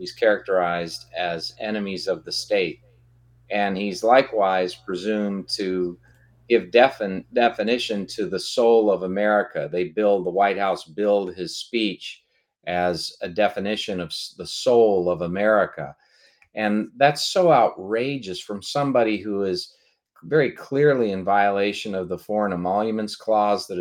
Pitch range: 90-110 Hz